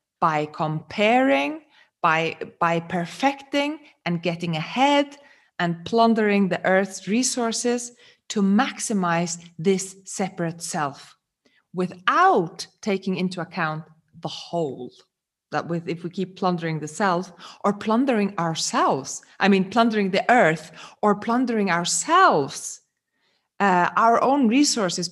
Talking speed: 110 wpm